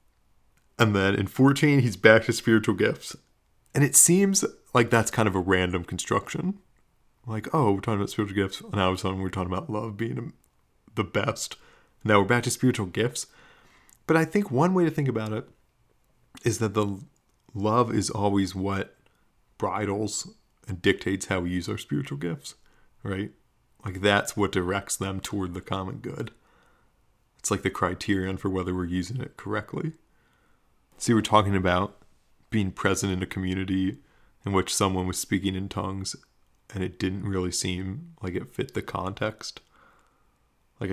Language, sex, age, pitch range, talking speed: English, male, 30-49, 95-115 Hz, 165 wpm